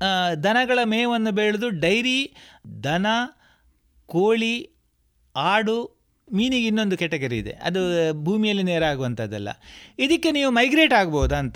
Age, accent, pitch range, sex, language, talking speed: 30-49, native, 175-250 Hz, male, Kannada, 100 wpm